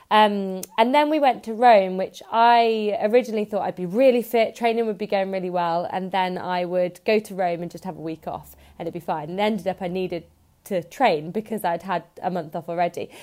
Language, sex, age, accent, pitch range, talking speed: English, female, 20-39, British, 180-215 Hz, 235 wpm